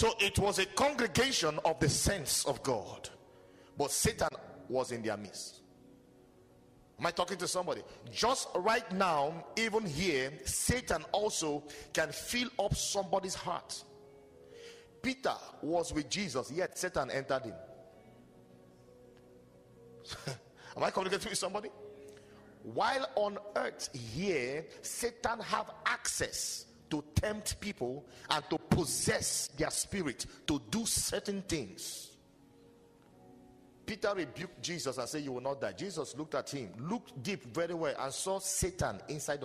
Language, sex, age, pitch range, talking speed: English, male, 50-69, 140-205 Hz, 130 wpm